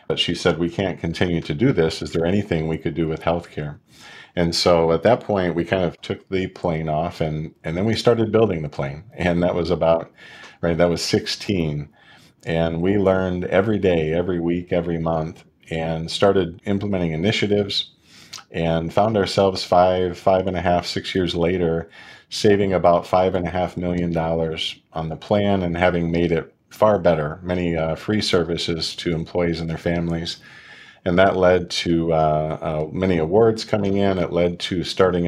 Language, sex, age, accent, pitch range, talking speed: English, male, 40-59, American, 80-95 Hz, 185 wpm